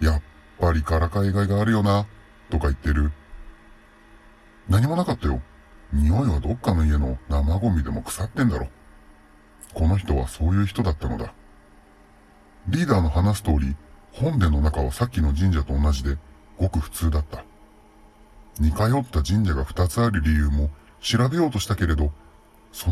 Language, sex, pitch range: Japanese, female, 75-105 Hz